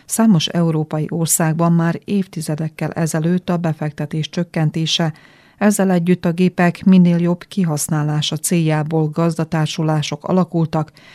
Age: 30-49